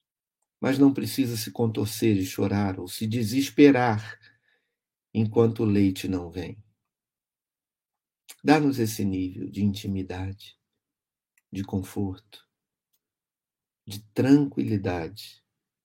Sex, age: male, 60-79